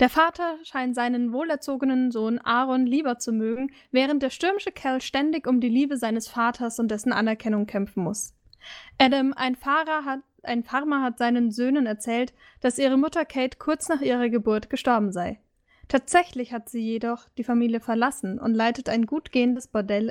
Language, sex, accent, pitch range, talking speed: German, female, German, 230-270 Hz, 175 wpm